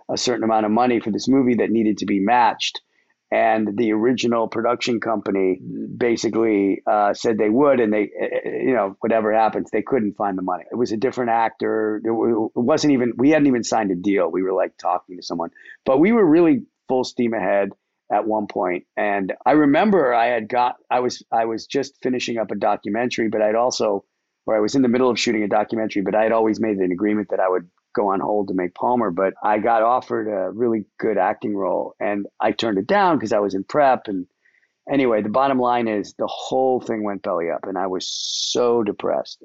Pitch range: 105-125 Hz